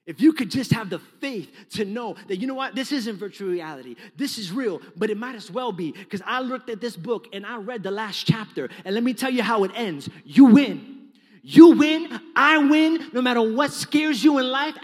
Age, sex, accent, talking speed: 30-49, male, American, 240 wpm